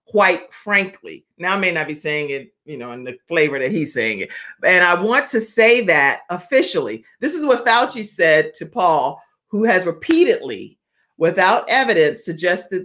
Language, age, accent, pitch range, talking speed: English, 50-69, American, 160-210 Hz, 175 wpm